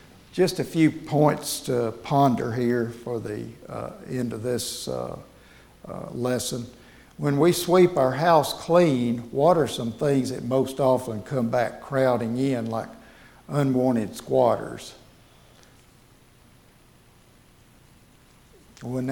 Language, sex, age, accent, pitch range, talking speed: English, male, 60-79, American, 120-135 Hz, 115 wpm